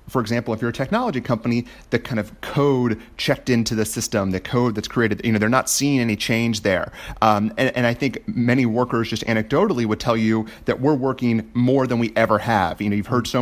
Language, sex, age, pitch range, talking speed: English, male, 30-49, 105-125 Hz, 235 wpm